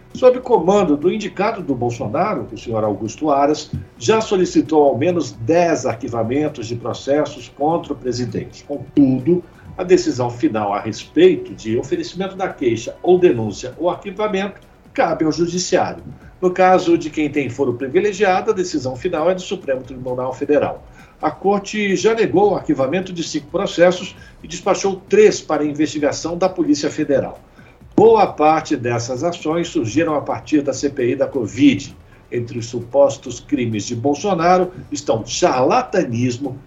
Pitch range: 135-185 Hz